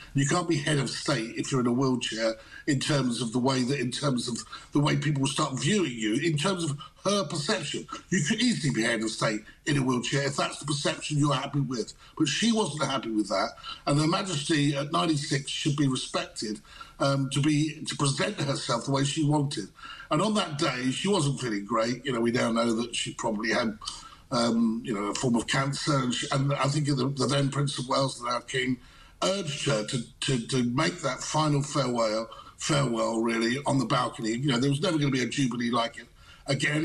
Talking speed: 225 wpm